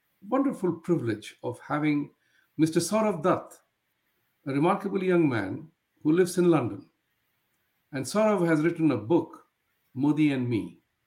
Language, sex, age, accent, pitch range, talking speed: English, male, 50-69, Indian, 135-185 Hz, 130 wpm